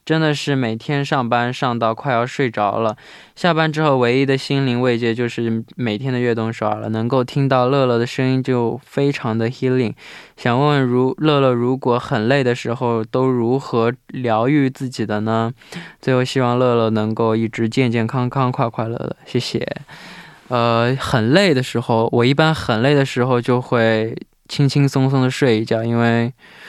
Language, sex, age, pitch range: Korean, male, 20-39, 115-140 Hz